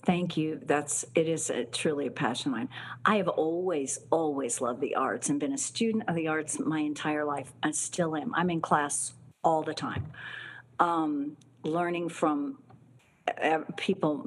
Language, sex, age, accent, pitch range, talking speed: English, female, 50-69, American, 150-175 Hz, 175 wpm